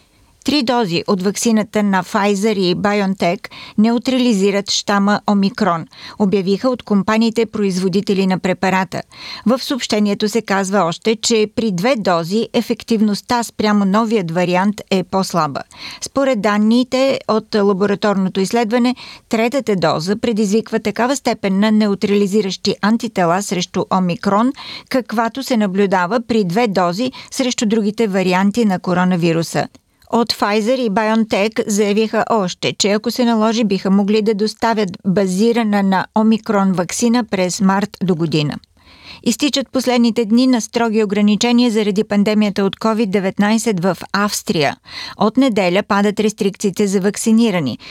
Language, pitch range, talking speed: Bulgarian, 195-230 Hz, 125 wpm